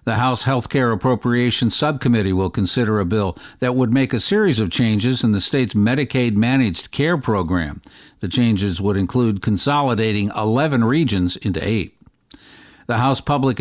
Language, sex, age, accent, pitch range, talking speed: English, male, 50-69, American, 105-135 Hz, 150 wpm